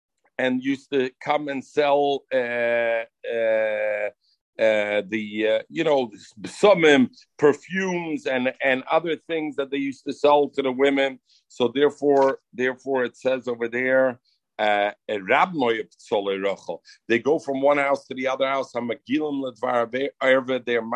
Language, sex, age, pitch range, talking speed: English, male, 50-69, 120-160 Hz, 130 wpm